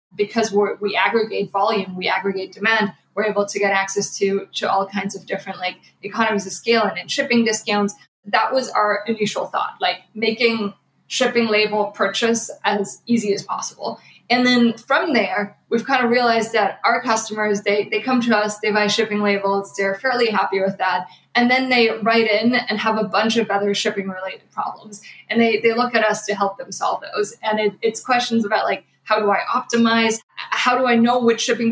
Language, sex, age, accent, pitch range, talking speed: English, female, 20-39, American, 200-230 Hz, 200 wpm